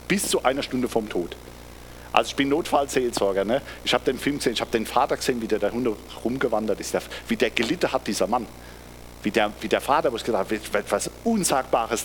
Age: 50-69